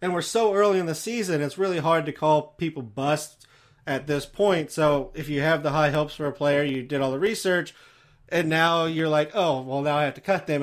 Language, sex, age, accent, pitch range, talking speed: English, male, 30-49, American, 140-175 Hz, 250 wpm